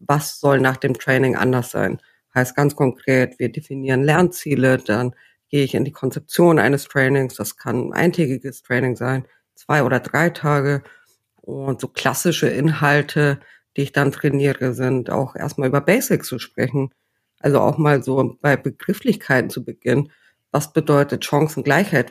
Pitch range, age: 130-150 Hz, 50-69